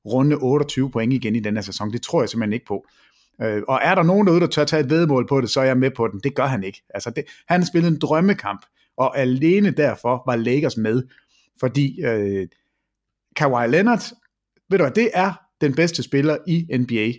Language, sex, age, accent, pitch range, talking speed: English, male, 30-49, Danish, 125-175 Hz, 215 wpm